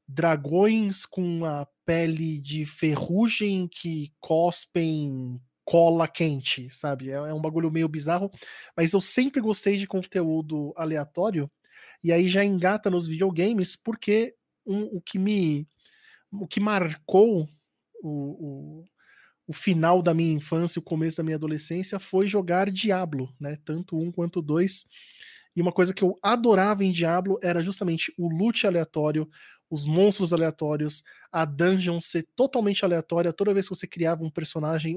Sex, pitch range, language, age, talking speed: male, 155-190 Hz, Portuguese, 20-39, 145 wpm